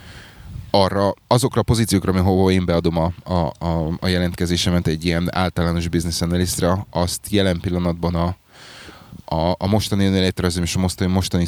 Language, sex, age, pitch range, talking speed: Hungarian, male, 20-39, 85-95 Hz, 145 wpm